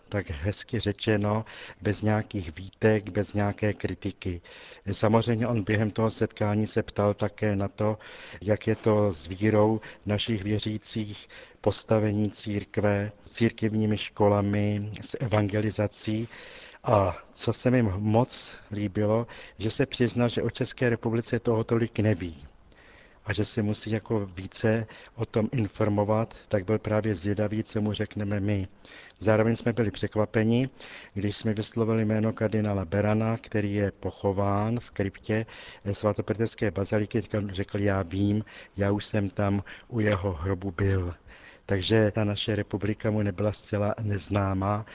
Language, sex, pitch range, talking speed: Czech, male, 100-110 Hz, 135 wpm